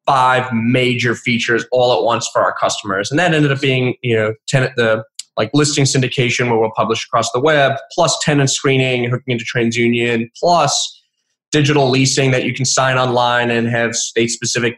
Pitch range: 120-140 Hz